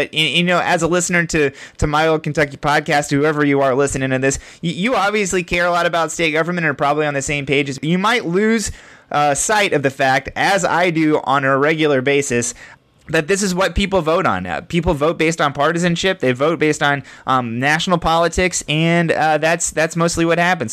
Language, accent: English, American